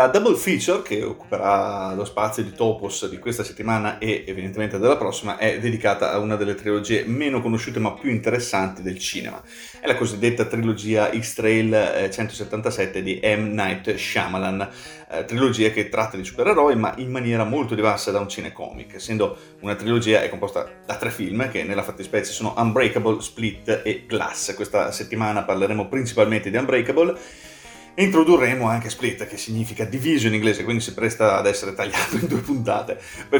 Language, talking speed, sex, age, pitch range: Italian, 165 wpm, male, 30-49, 105-115 Hz